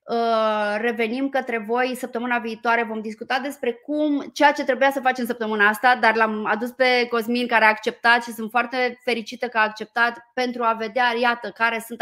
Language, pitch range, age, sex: Romanian, 225-265 Hz, 20-39, female